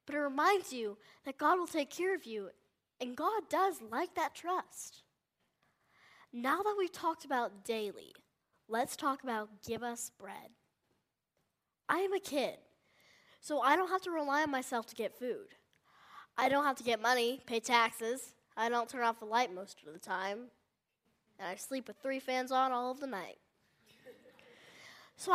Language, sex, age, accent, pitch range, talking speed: English, female, 10-29, American, 235-325 Hz, 175 wpm